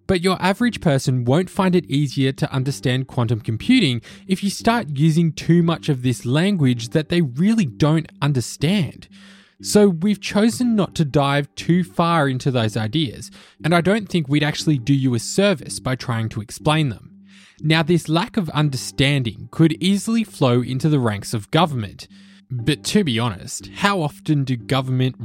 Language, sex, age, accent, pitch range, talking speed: English, male, 20-39, Australian, 125-175 Hz, 175 wpm